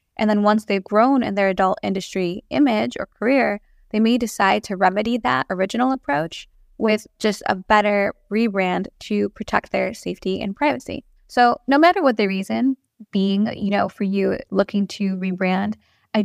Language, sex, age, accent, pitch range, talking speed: English, female, 10-29, American, 195-225 Hz, 170 wpm